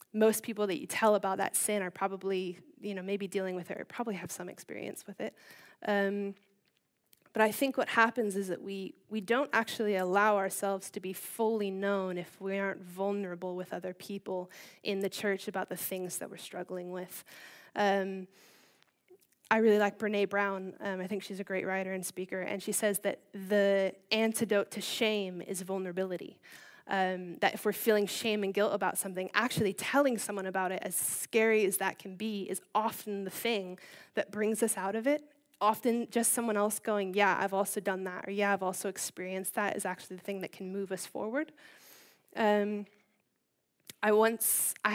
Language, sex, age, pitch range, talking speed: English, female, 10-29, 190-210 Hz, 190 wpm